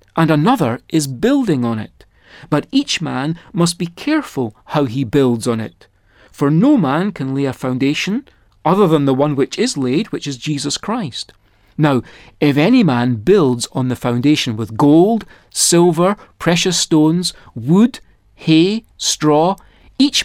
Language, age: English, 40-59